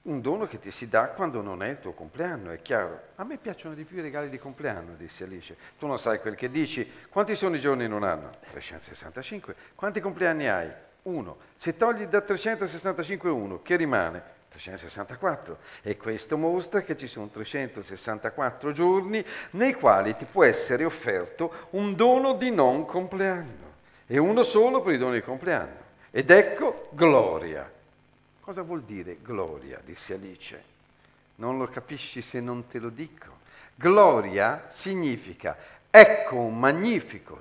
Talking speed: 160 wpm